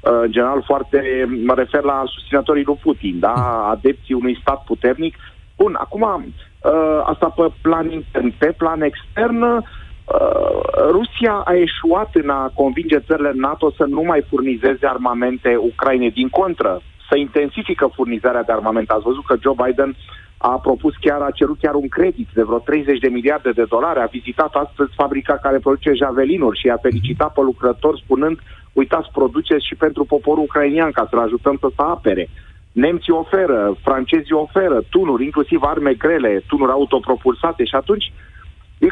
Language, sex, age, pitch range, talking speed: Romanian, male, 30-49, 125-170 Hz, 160 wpm